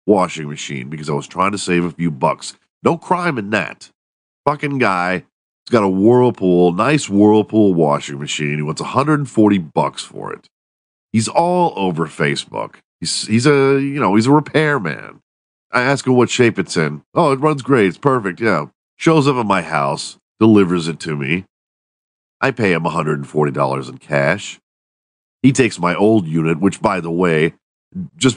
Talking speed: 175 wpm